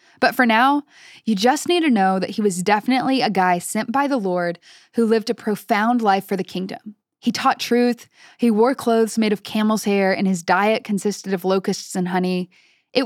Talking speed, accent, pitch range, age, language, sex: 205 wpm, American, 200-260 Hz, 10-29, English, female